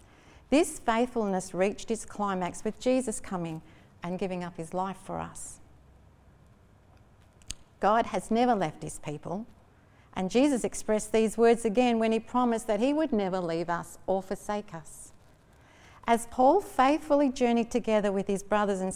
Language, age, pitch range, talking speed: English, 50-69, 190-250 Hz, 150 wpm